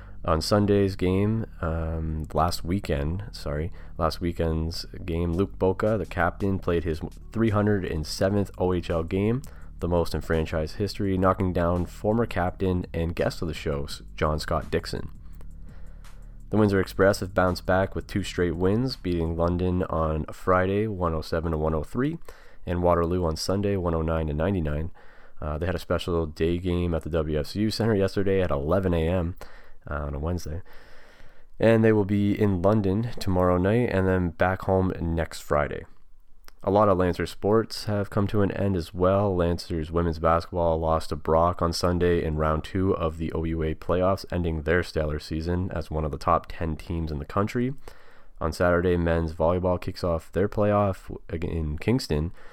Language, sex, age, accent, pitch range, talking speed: English, male, 30-49, American, 80-100 Hz, 160 wpm